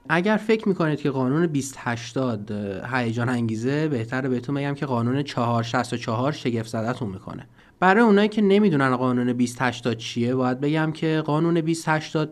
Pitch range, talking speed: 130-190 Hz, 135 wpm